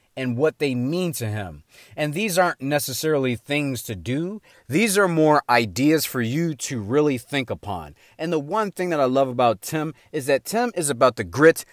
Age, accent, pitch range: 30-49, American, 115-150 Hz